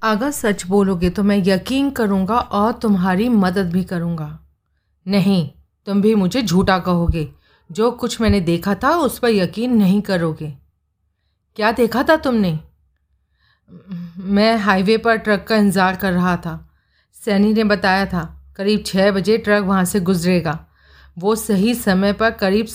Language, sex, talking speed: Hindi, female, 150 wpm